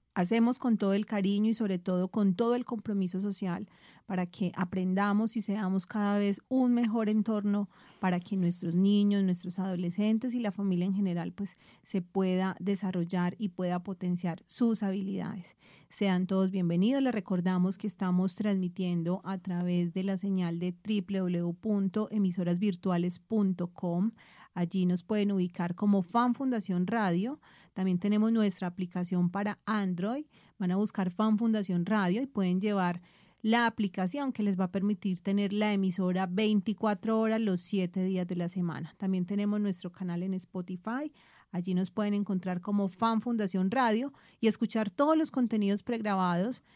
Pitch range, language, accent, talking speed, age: 185-215 Hz, Spanish, Colombian, 155 wpm, 30-49